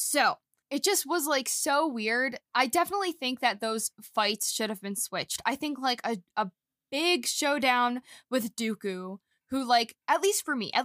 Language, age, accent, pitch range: English, 20-39, American, 215-275 Hz